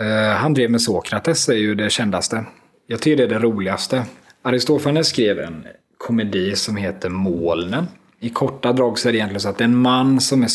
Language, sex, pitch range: Swedish, male, 100-130 Hz